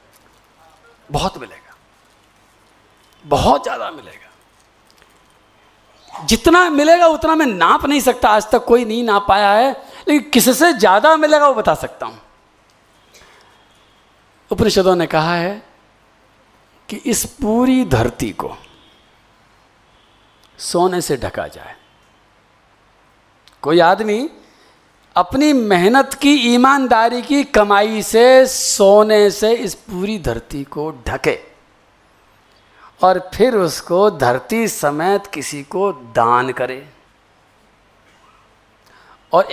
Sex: male